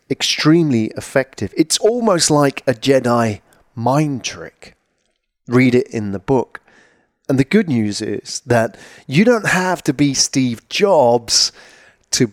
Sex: male